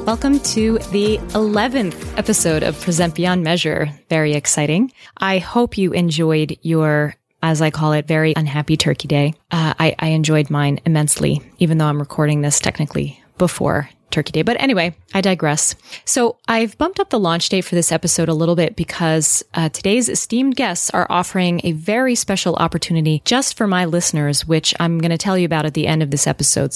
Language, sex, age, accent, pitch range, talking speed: English, female, 20-39, American, 160-205 Hz, 190 wpm